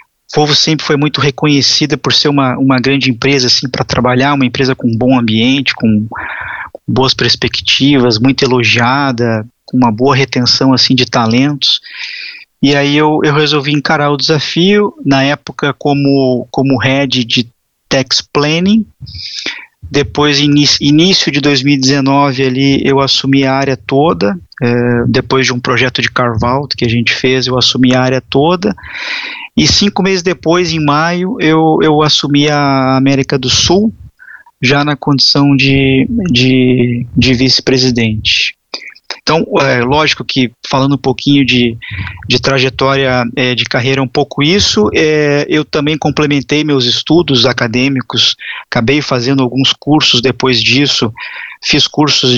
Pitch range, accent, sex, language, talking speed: 125-145 Hz, Brazilian, male, English, 140 wpm